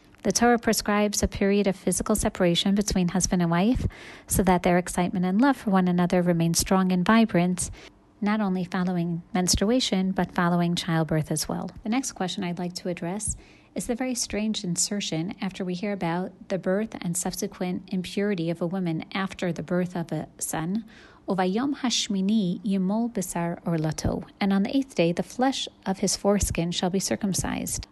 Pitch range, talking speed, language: 175-210 Hz, 165 wpm, English